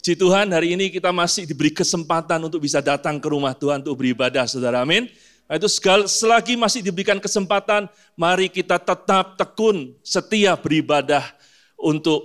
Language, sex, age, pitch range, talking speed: Indonesian, male, 30-49, 150-195 Hz, 155 wpm